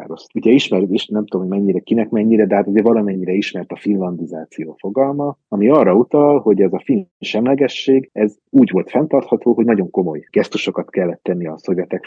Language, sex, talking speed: Hungarian, male, 185 wpm